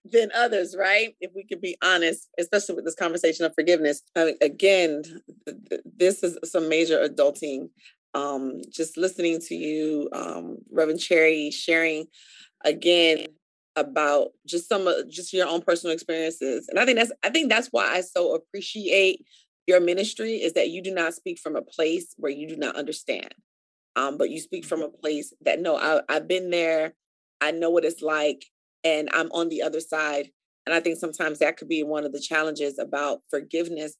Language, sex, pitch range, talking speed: English, female, 155-190 Hz, 190 wpm